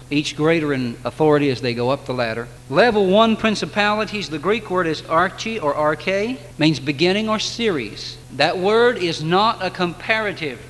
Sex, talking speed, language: male, 170 wpm, English